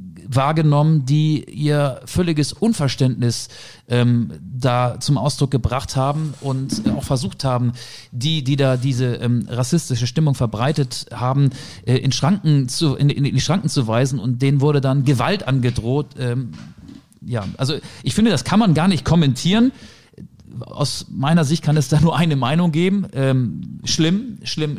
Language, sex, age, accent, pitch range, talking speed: German, male, 40-59, German, 120-150 Hz, 155 wpm